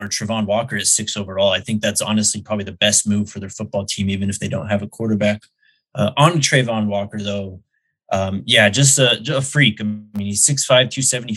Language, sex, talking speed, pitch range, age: English, male, 230 wpm, 105-130 Hz, 20-39